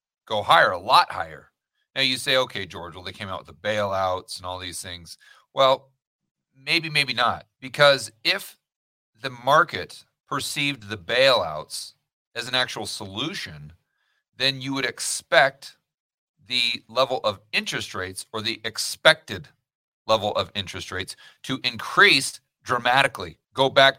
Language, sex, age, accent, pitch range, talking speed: English, male, 40-59, American, 100-135 Hz, 145 wpm